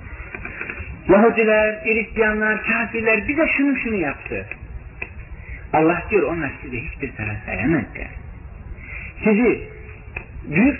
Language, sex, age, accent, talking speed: Turkish, male, 50-69, native, 95 wpm